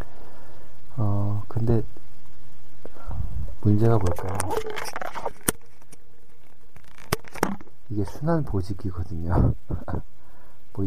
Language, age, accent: Korean, 50-69, native